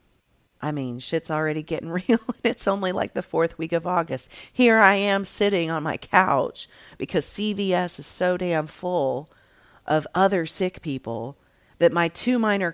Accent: American